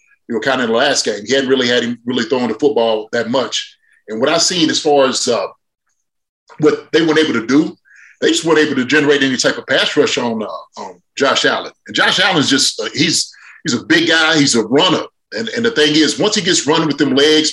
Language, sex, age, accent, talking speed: English, male, 30-49, American, 250 wpm